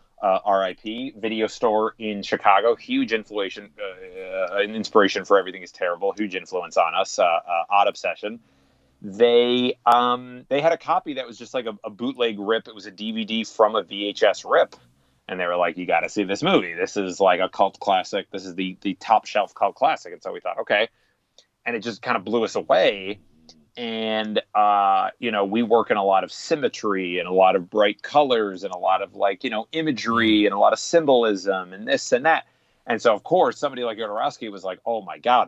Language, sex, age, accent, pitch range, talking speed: English, male, 30-49, American, 95-155 Hz, 220 wpm